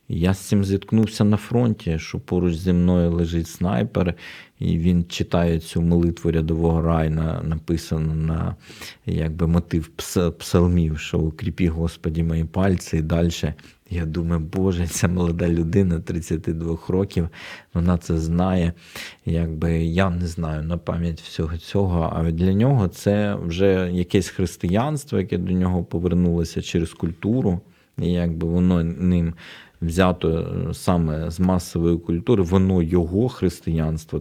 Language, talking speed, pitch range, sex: Ukrainian, 135 wpm, 80-95 Hz, male